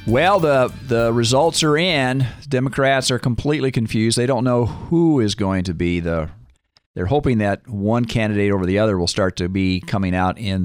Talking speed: 190 wpm